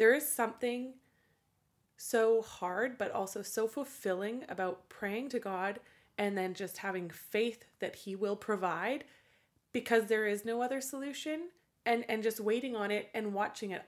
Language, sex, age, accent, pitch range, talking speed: English, female, 20-39, American, 190-235 Hz, 160 wpm